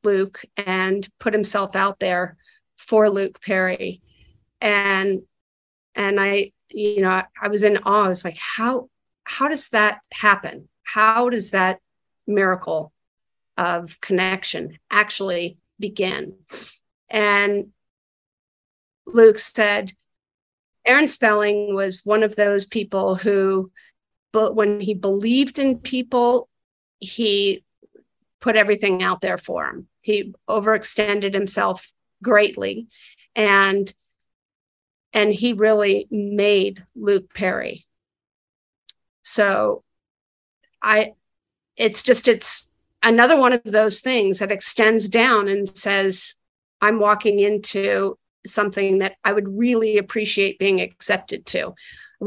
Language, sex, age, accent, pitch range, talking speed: English, female, 50-69, American, 195-220 Hz, 110 wpm